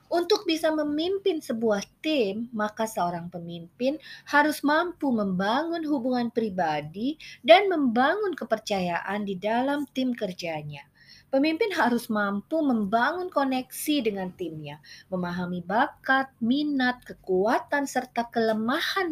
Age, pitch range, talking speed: 30-49, 190-295 Hz, 105 wpm